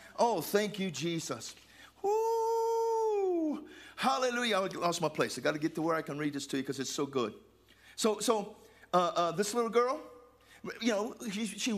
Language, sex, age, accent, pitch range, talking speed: English, male, 50-69, American, 210-300 Hz, 190 wpm